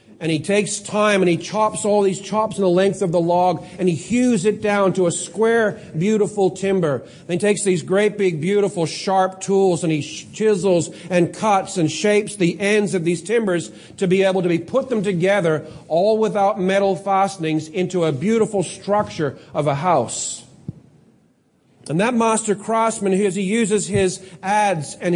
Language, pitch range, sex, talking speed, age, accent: English, 180-210 Hz, male, 180 wpm, 40-59, American